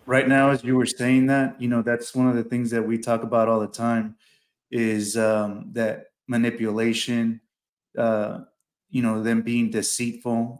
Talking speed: 175 wpm